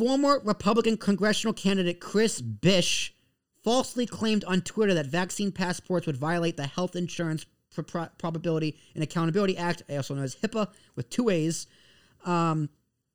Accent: American